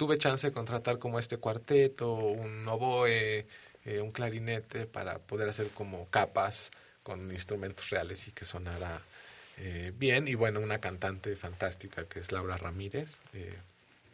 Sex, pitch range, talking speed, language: male, 100-130 Hz, 150 wpm, Spanish